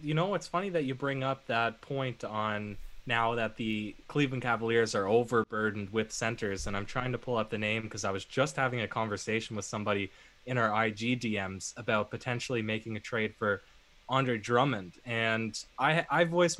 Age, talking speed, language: 20-39, 190 wpm, English